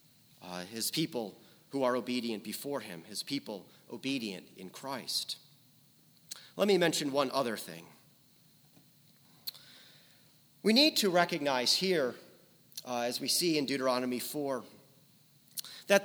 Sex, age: male, 40-59